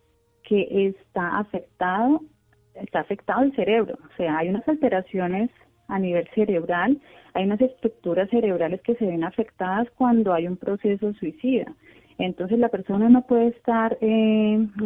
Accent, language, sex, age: Colombian, Spanish, female, 30-49